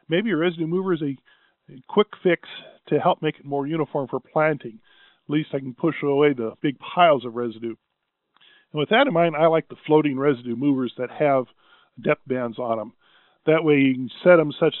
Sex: male